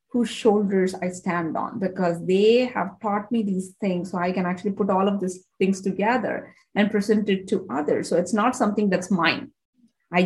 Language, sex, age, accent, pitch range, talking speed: English, female, 30-49, Indian, 185-230 Hz, 200 wpm